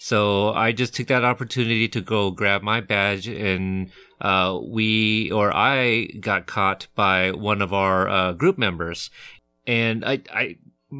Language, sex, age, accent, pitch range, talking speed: English, male, 30-49, American, 95-115 Hz, 155 wpm